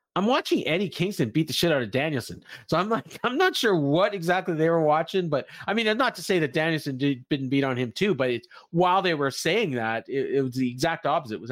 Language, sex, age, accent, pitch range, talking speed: English, male, 40-59, American, 130-180 Hz, 245 wpm